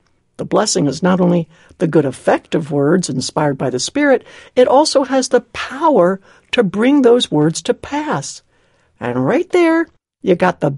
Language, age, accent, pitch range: English, 60-79, American, 155-250 Hz